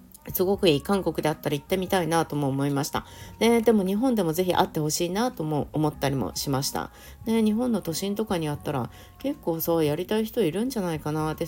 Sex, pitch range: female, 145-205 Hz